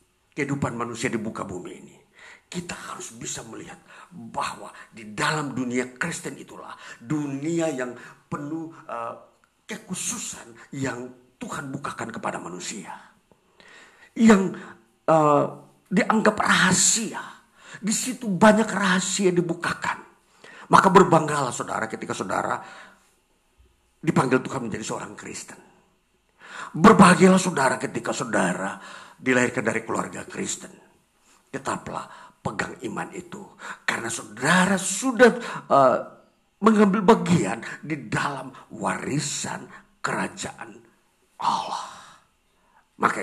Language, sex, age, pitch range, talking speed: Indonesian, male, 50-69, 135-205 Hz, 95 wpm